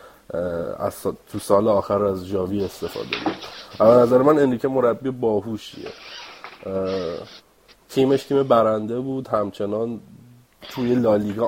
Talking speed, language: 110 wpm, Persian